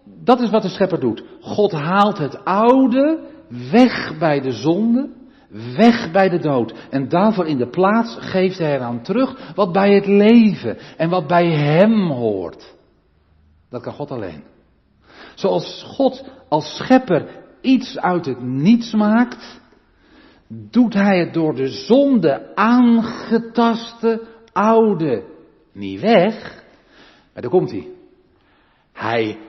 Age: 50-69